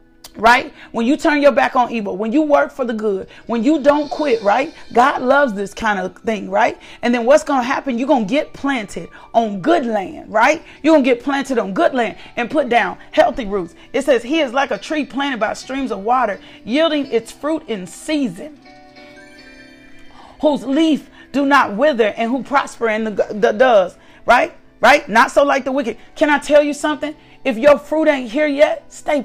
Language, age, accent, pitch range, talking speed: English, 40-59, American, 255-315 Hz, 210 wpm